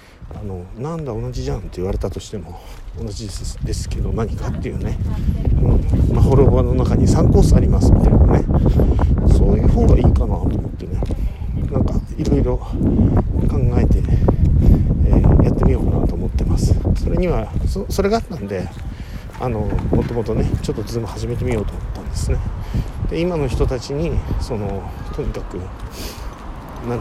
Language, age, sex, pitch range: Japanese, 50-69, male, 85-115 Hz